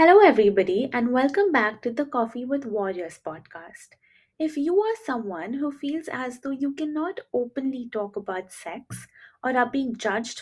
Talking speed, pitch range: 165 wpm, 200-275 Hz